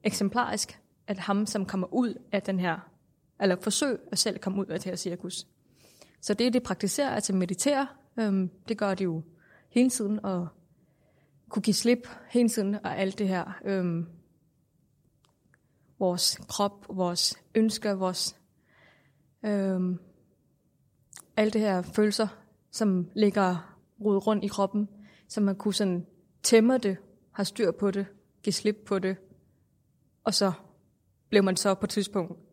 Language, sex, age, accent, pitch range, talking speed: Danish, female, 20-39, native, 180-210 Hz, 150 wpm